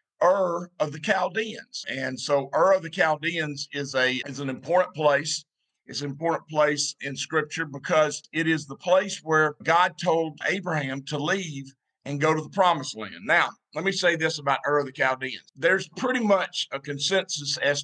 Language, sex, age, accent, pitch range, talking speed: English, male, 50-69, American, 135-160 Hz, 185 wpm